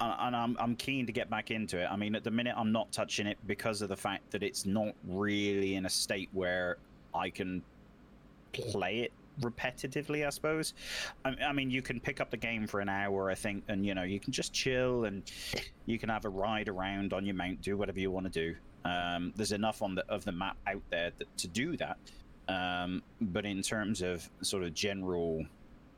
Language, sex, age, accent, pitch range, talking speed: English, male, 30-49, British, 90-110 Hz, 215 wpm